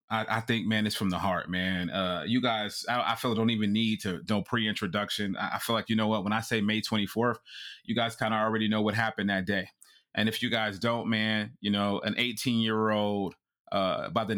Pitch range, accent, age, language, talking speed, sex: 105-120 Hz, American, 30-49, English, 240 wpm, male